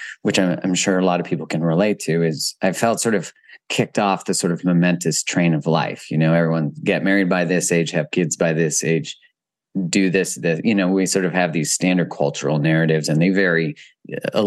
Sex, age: male, 30-49